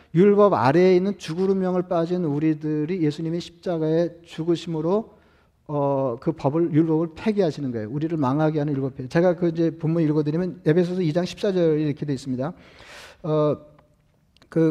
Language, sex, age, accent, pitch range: Korean, male, 40-59, native, 150-180 Hz